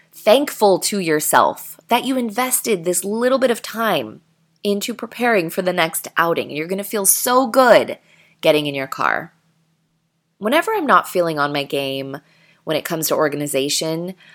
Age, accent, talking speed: 20-39, American, 165 wpm